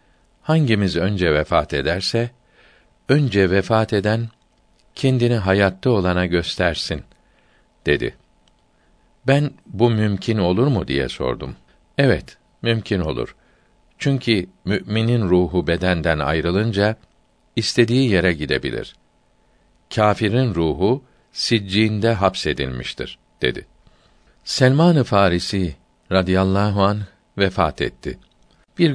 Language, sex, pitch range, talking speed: Turkish, male, 85-115 Hz, 85 wpm